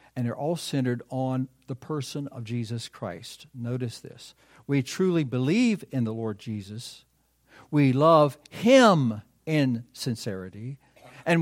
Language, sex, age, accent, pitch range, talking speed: English, male, 60-79, American, 120-150 Hz, 130 wpm